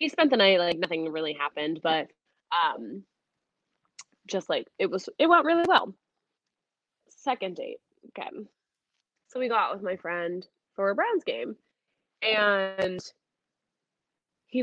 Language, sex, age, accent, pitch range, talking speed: English, female, 20-39, American, 195-315 Hz, 140 wpm